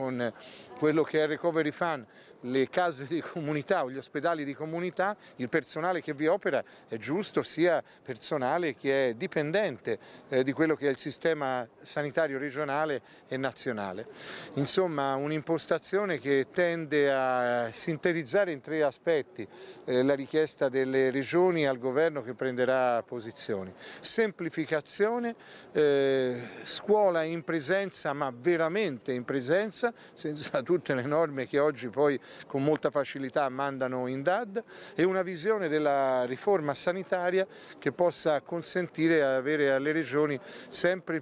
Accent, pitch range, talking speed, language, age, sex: native, 135-170 Hz, 135 wpm, Italian, 40-59, male